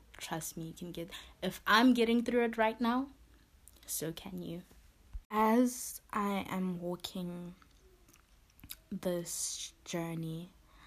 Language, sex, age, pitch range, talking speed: English, female, 20-39, 165-190 Hz, 115 wpm